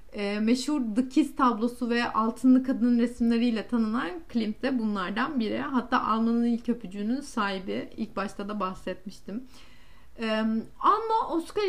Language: Turkish